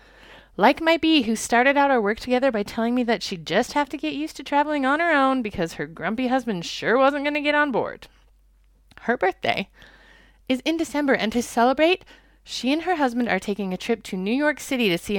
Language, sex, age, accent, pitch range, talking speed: English, female, 30-49, American, 200-290 Hz, 225 wpm